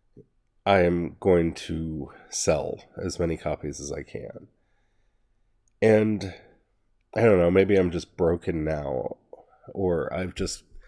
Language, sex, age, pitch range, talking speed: English, male, 30-49, 85-100 Hz, 125 wpm